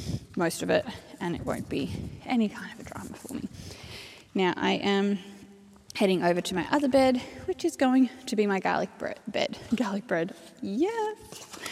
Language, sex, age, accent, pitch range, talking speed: English, female, 10-29, Australian, 195-245 Hz, 180 wpm